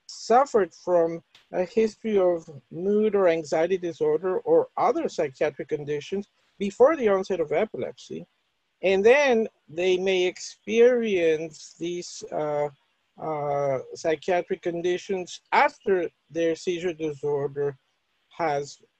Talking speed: 105 wpm